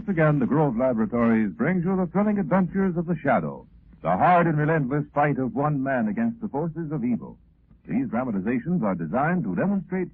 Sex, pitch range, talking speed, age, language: male, 135-200 Hz, 190 wpm, 60-79, English